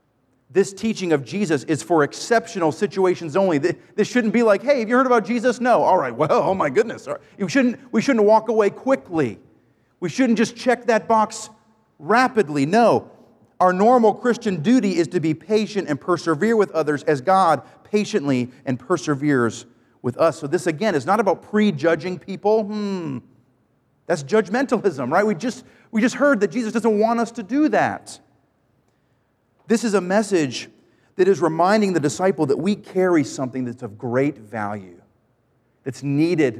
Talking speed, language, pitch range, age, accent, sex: 170 wpm, English, 135-215 Hz, 40-59, American, male